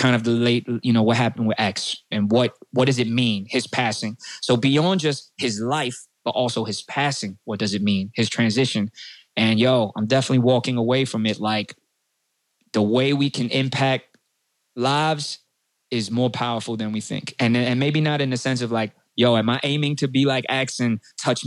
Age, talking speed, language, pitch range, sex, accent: 20-39, 205 wpm, English, 115-140 Hz, male, American